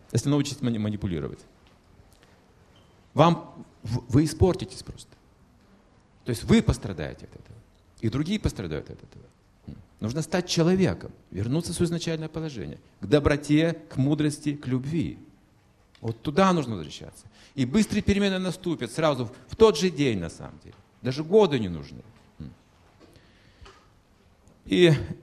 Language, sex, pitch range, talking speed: Russian, male, 100-155 Hz, 125 wpm